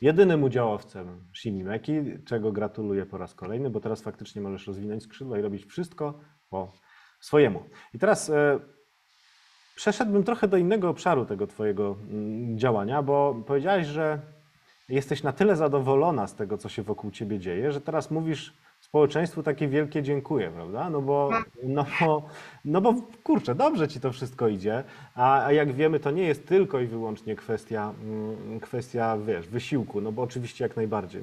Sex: male